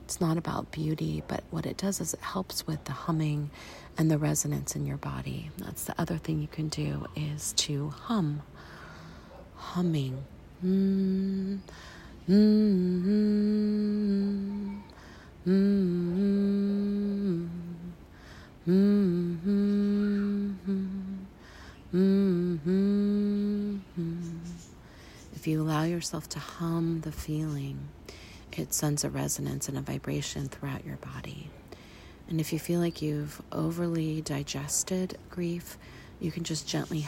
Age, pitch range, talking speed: 30-49, 145-190 Hz, 110 wpm